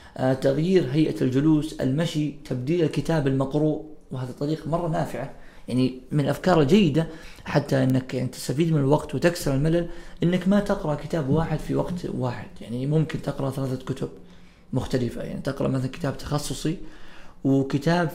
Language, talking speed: Arabic, 140 wpm